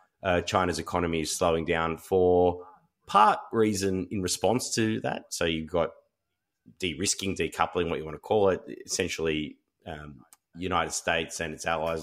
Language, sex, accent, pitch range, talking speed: English, male, Australian, 80-100 Hz, 155 wpm